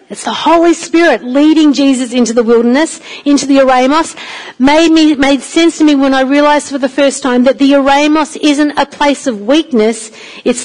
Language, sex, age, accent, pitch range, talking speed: English, female, 50-69, Australian, 235-290 Hz, 185 wpm